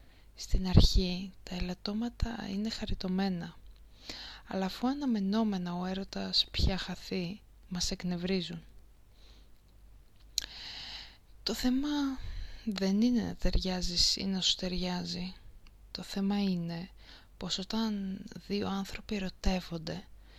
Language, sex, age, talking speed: Greek, female, 20-39, 95 wpm